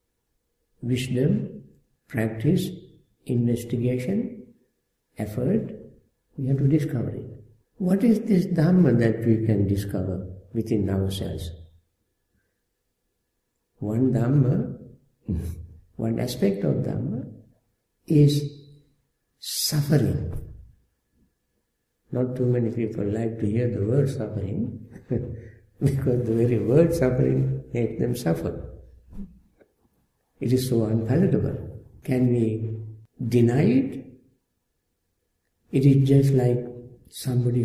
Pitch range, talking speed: 105-130 Hz, 90 wpm